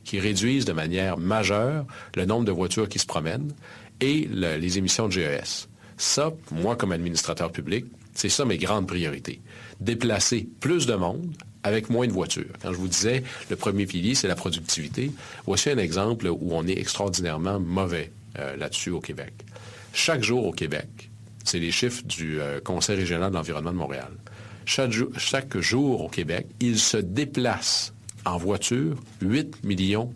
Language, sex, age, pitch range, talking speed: French, male, 50-69, 95-115 Hz, 165 wpm